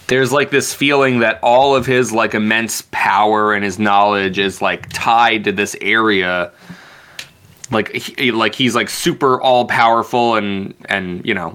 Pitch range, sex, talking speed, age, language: 105-130 Hz, male, 160 wpm, 20-39, English